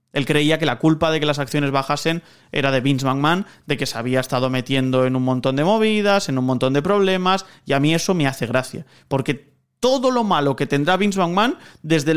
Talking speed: 225 wpm